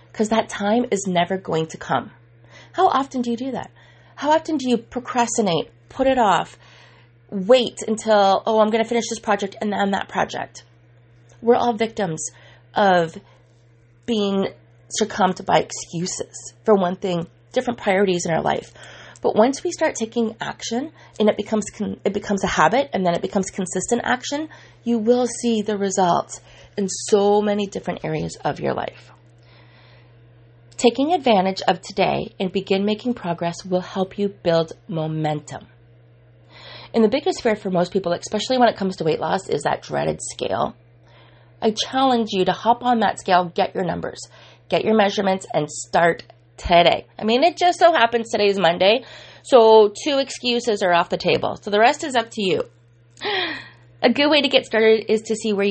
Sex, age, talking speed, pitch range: female, 30-49, 175 wpm, 155-230 Hz